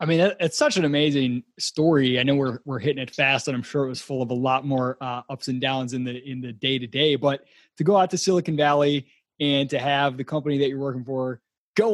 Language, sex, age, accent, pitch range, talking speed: English, male, 20-39, American, 130-170 Hz, 250 wpm